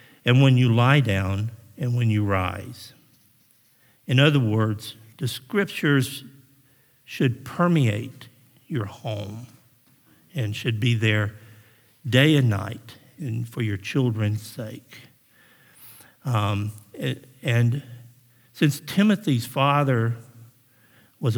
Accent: American